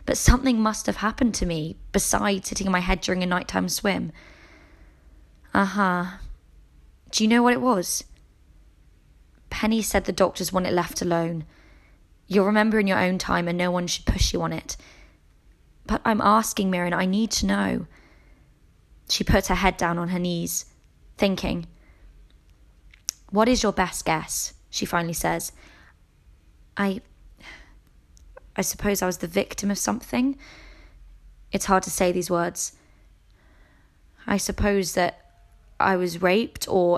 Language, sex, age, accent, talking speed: English, female, 20-39, British, 150 wpm